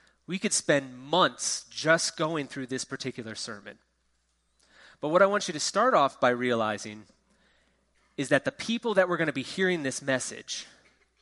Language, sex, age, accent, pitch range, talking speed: English, male, 30-49, American, 120-175 Hz, 170 wpm